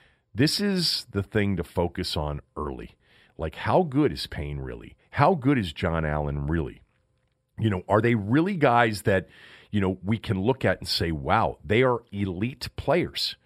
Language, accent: English, American